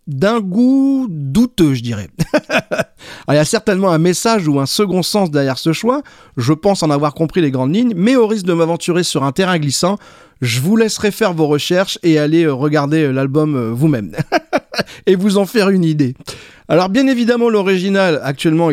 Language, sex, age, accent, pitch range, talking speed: French, male, 40-59, French, 150-220 Hz, 190 wpm